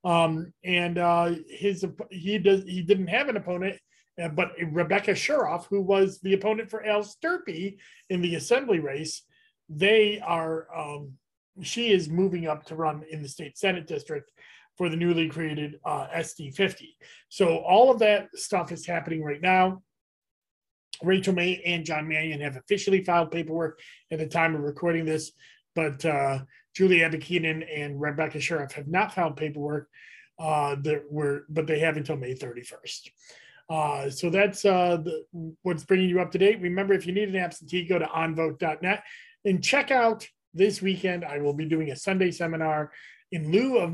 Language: English